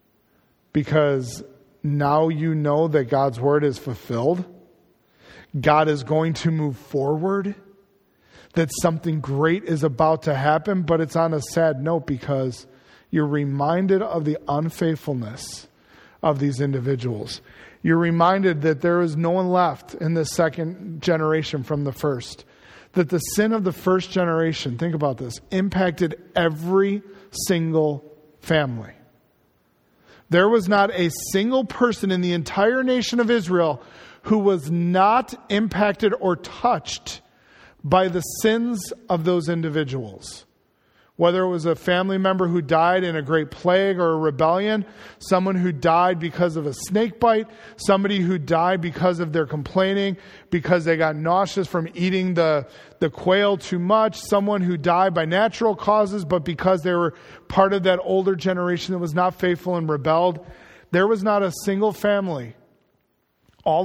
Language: English